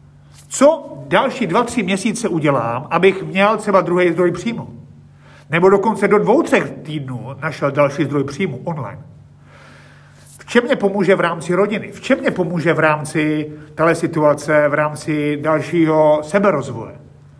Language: Slovak